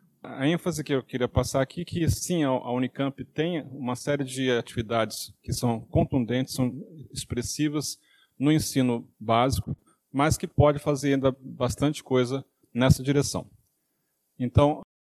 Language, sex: Portuguese, male